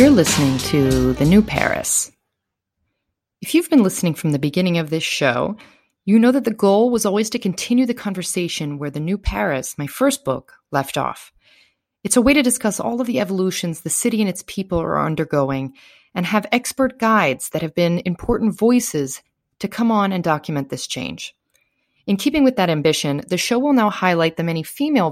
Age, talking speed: 30-49, 195 wpm